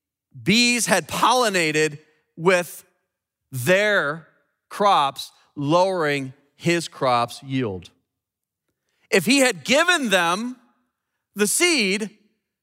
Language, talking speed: English, 80 wpm